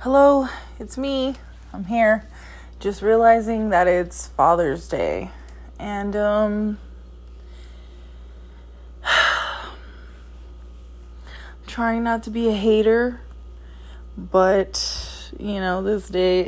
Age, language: 20-39, English